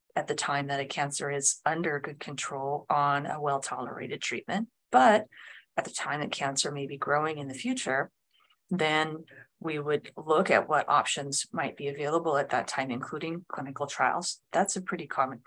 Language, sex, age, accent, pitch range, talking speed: English, female, 30-49, American, 145-180 Hz, 180 wpm